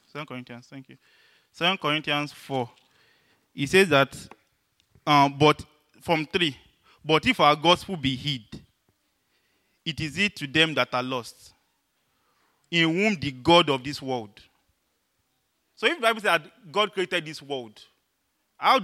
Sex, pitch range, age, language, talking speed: male, 135-175 Hz, 30-49, English, 145 wpm